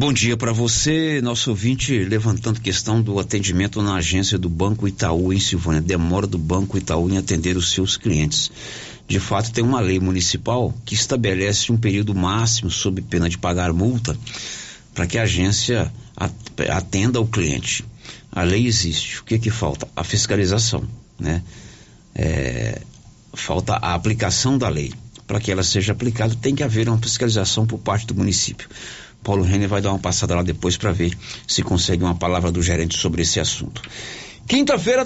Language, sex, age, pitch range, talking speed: Portuguese, male, 60-79, 95-135 Hz, 170 wpm